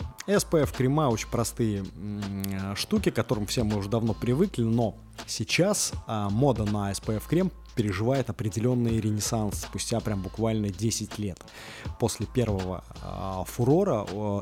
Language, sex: Russian, male